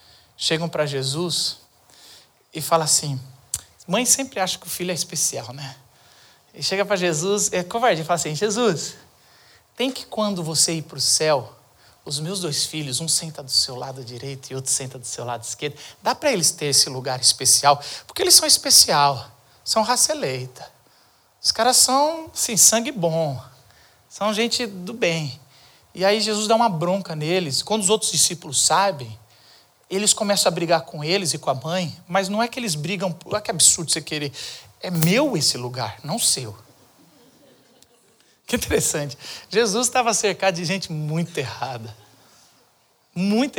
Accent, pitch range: Brazilian, 135-205 Hz